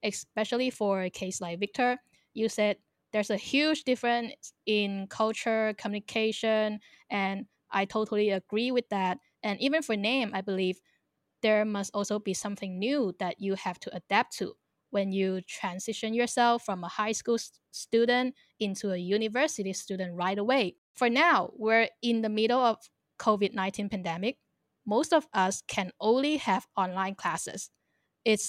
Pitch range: 195-235 Hz